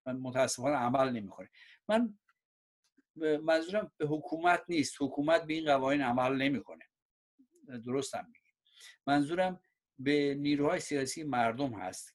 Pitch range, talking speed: 130-180 Hz, 115 wpm